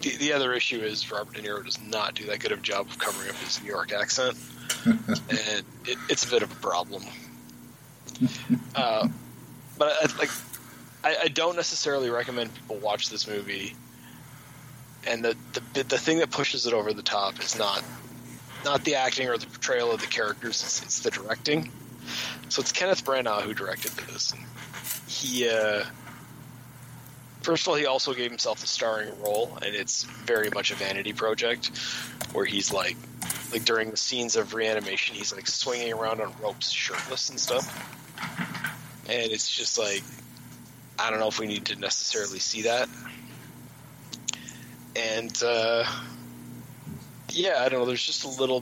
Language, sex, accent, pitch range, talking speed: English, male, American, 105-135 Hz, 170 wpm